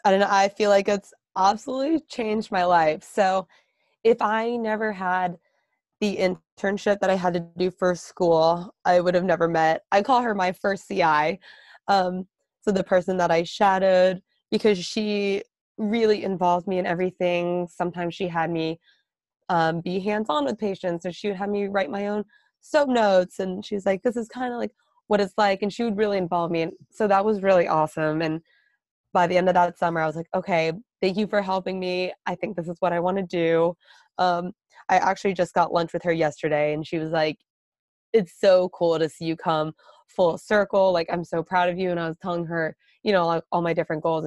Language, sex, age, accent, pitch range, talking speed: English, female, 20-39, American, 170-200 Hz, 210 wpm